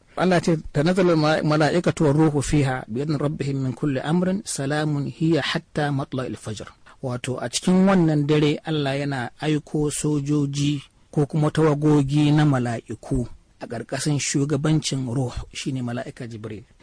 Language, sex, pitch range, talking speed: English, male, 125-155 Hz, 130 wpm